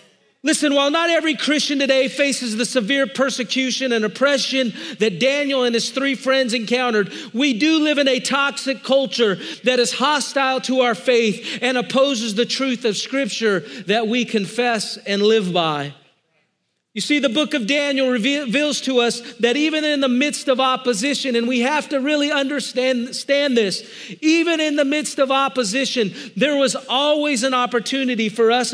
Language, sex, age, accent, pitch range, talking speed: English, male, 40-59, American, 225-285 Hz, 170 wpm